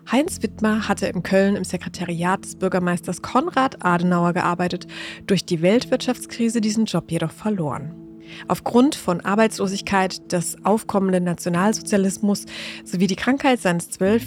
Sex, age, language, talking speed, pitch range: female, 20-39, German, 125 wpm, 175-215 Hz